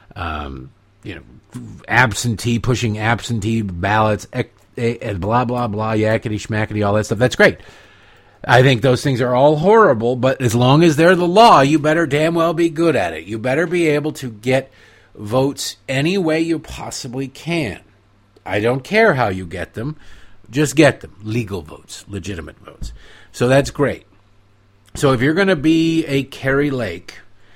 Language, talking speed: English, 170 wpm